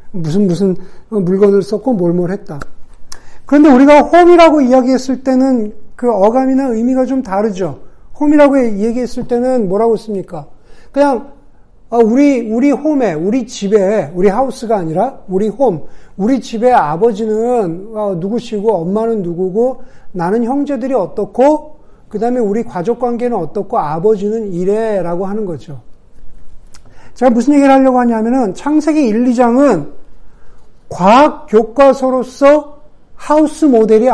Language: Korean